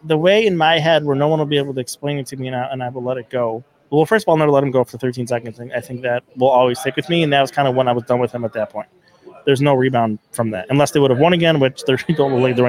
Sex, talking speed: male, 345 wpm